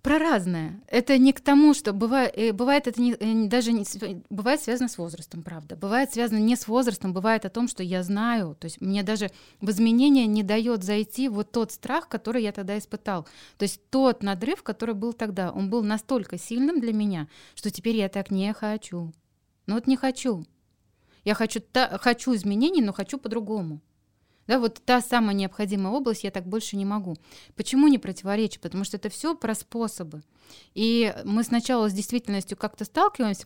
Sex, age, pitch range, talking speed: female, 20-39, 195-240 Hz, 175 wpm